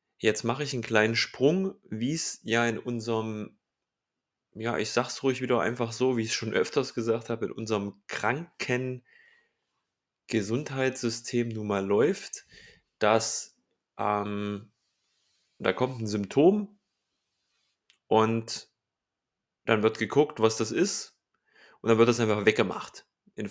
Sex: male